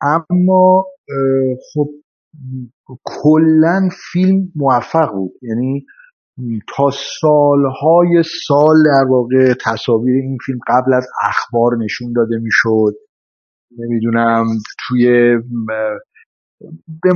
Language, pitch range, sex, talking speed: Persian, 115-160 Hz, male, 80 wpm